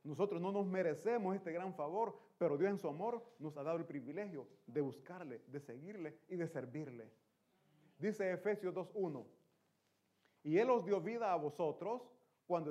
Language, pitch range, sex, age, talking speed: Italian, 150-205 Hz, male, 30-49, 165 wpm